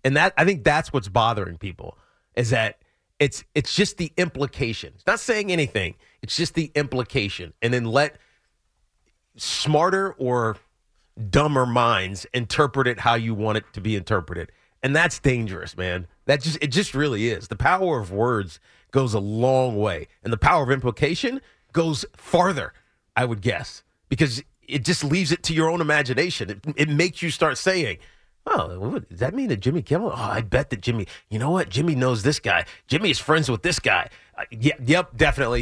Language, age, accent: English, 30-49, American